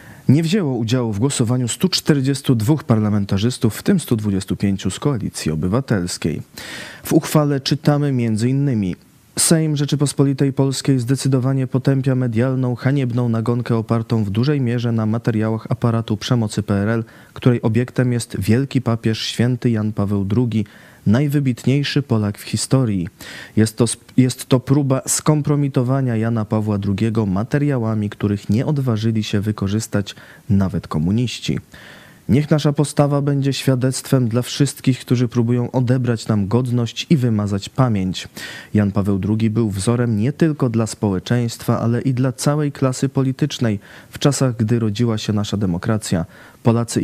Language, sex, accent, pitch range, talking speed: Polish, male, native, 110-135 Hz, 130 wpm